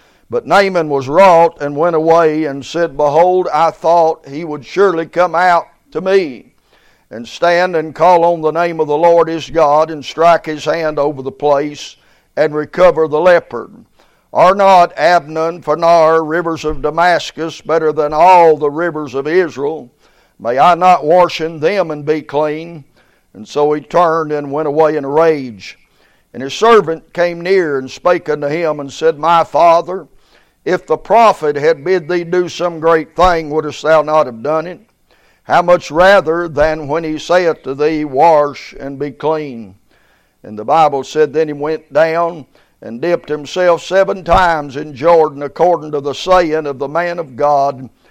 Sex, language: male, English